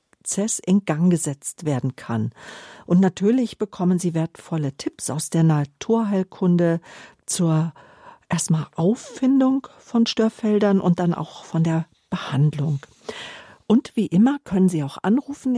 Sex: female